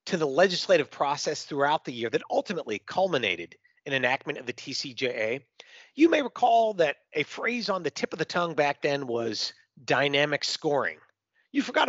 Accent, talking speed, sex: American, 170 wpm, male